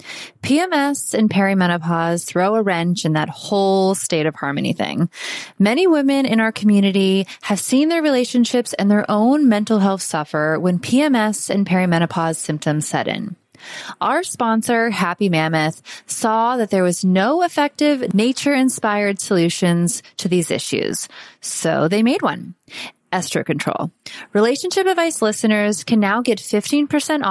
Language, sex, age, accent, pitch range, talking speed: English, female, 20-39, American, 180-245 Hz, 135 wpm